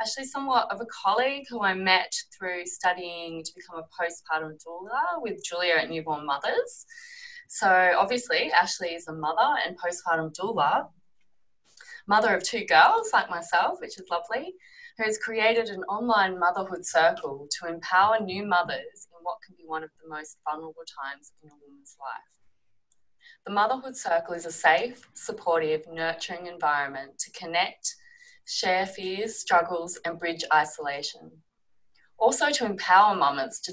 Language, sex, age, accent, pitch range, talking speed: English, female, 20-39, Australian, 165-230 Hz, 150 wpm